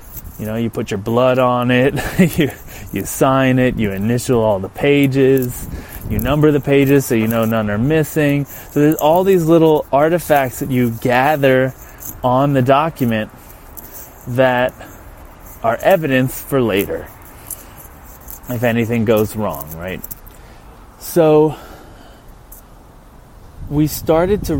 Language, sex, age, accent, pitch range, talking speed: English, male, 30-49, American, 115-145 Hz, 130 wpm